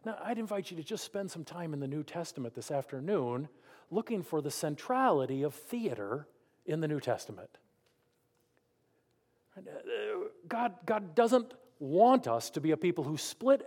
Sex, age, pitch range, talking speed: male, 50-69, 145-210 Hz, 160 wpm